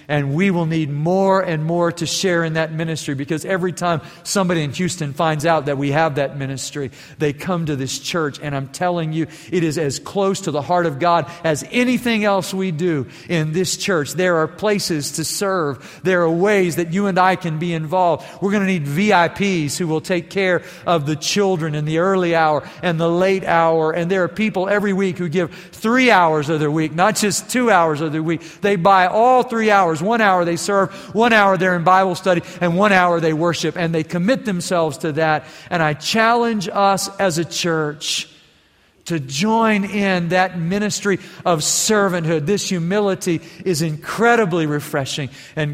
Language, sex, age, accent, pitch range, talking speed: English, male, 50-69, American, 150-185 Hz, 200 wpm